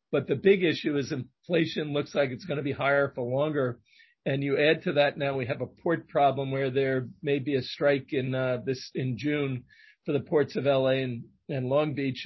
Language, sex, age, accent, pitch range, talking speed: English, male, 50-69, American, 135-165 Hz, 225 wpm